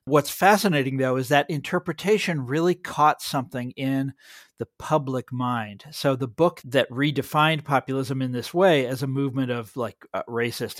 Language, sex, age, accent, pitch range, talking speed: English, male, 40-59, American, 120-145 Hz, 160 wpm